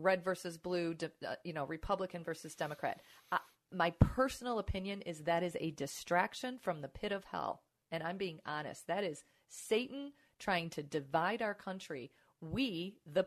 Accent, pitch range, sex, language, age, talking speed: American, 155-215 Hz, female, English, 40-59, 165 wpm